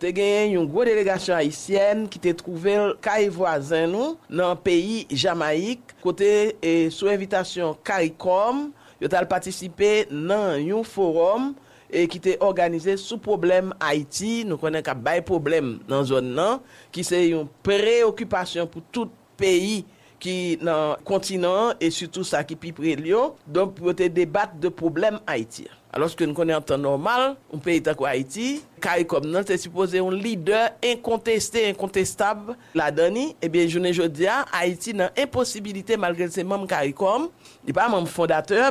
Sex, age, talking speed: male, 50-69, 150 wpm